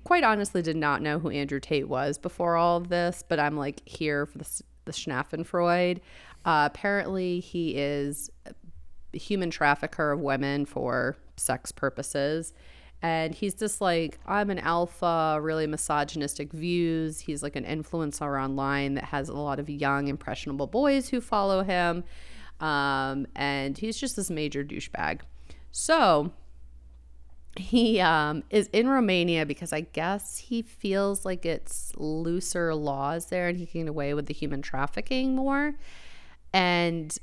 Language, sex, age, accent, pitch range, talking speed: English, female, 30-49, American, 145-180 Hz, 150 wpm